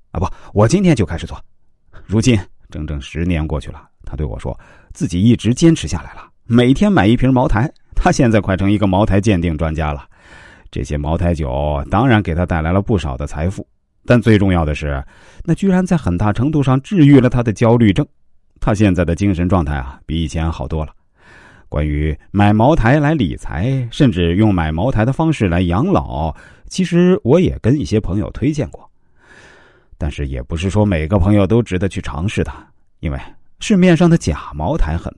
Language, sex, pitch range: Chinese, male, 80-120 Hz